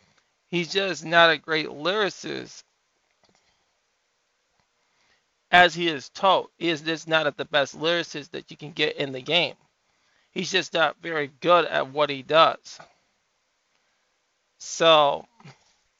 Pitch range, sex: 140-165 Hz, male